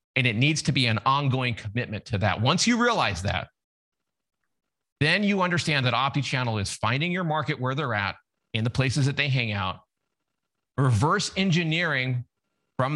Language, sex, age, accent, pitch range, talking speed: English, male, 40-59, American, 120-170 Hz, 165 wpm